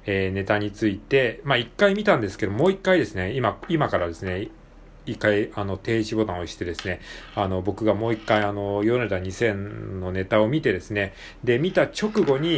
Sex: male